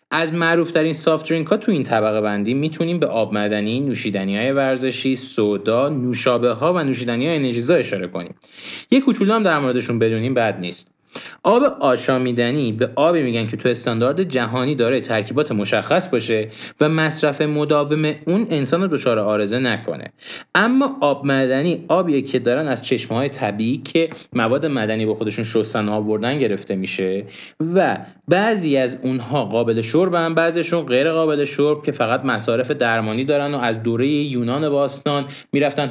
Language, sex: Persian, male